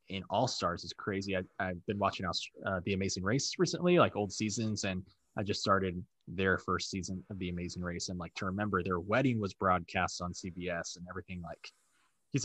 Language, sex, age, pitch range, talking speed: English, male, 20-39, 90-110 Hz, 200 wpm